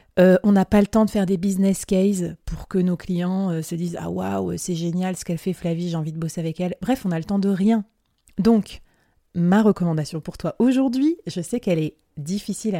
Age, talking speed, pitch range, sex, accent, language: 30-49, 245 wpm, 165-195 Hz, female, French, French